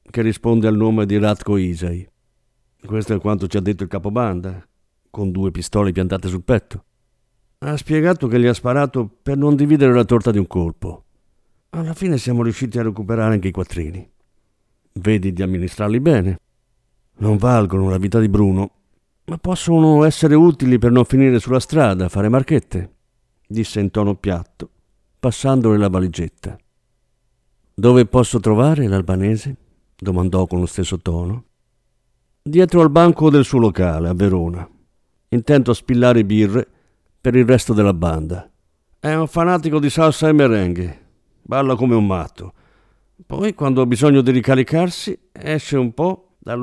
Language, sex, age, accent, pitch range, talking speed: Italian, male, 50-69, native, 95-140 Hz, 155 wpm